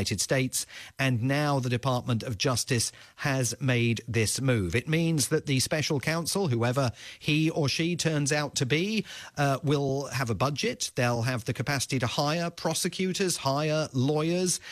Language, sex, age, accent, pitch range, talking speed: English, male, 40-59, British, 120-150 Hz, 160 wpm